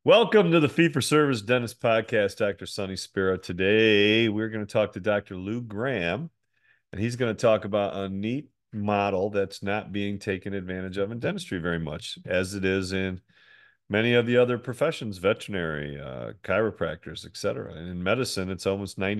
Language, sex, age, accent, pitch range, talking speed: English, male, 40-59, American, 95-115 Hz, 175 wpm